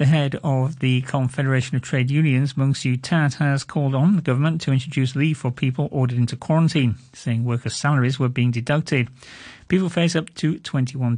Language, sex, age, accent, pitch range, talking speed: English, male, 40-59, British, 125-145 Hz, 190 wpm